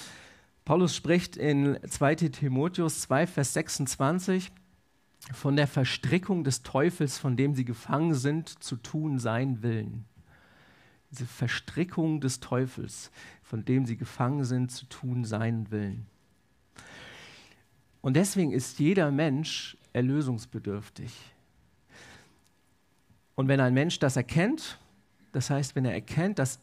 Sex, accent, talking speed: male, German, 120 wpm